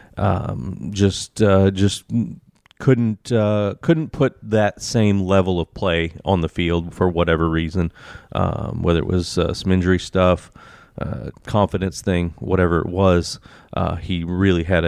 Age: 30-49